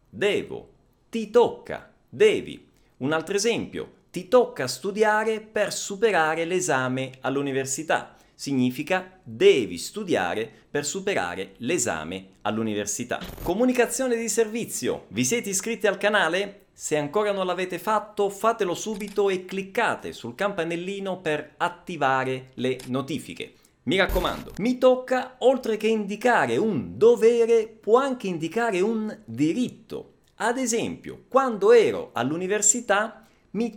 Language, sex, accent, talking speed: Italian, male, native, 115 wpm